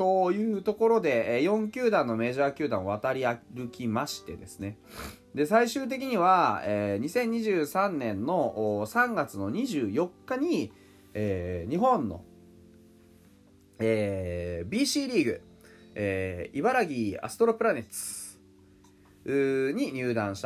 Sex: male